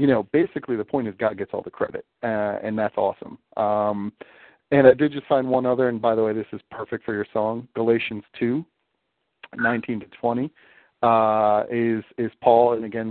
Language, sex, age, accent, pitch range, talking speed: English, male, 40-59, American, 105-120 Hz, 200 wpm